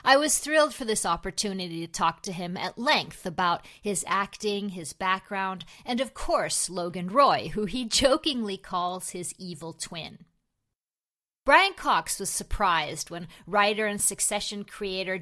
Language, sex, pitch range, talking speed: English, female, 180-245 Hz, 150 wpm